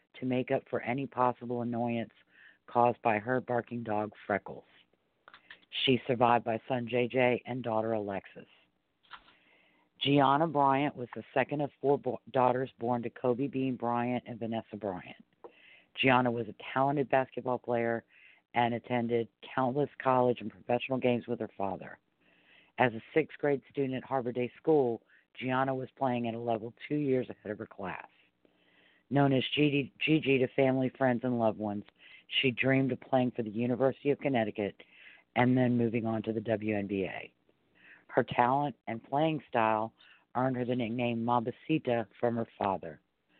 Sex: female